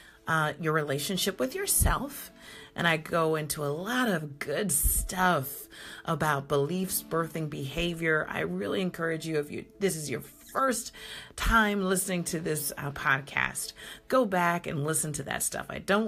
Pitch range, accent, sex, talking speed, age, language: 150-205 Hz, American, female, 160 wpm, 40-59, English